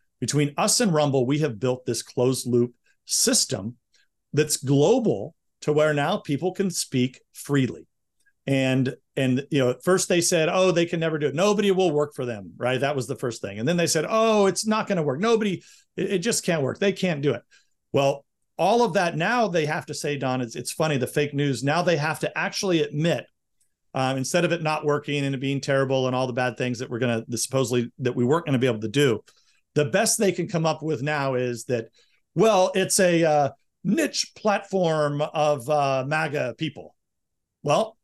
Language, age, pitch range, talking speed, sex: English, 40-59, 130-175 Hz, 215 wpm, male